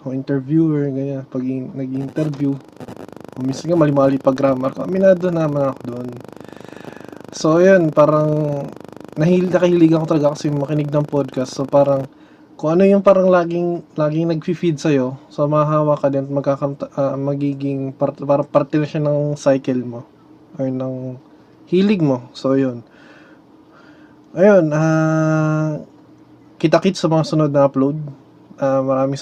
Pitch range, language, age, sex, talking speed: 140-160 Hz, Filipino, 20-39, male, 140 wpm